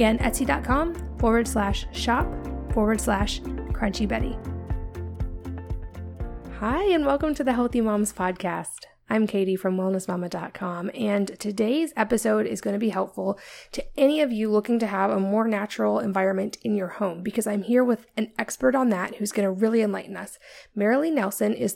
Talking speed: 165 wpm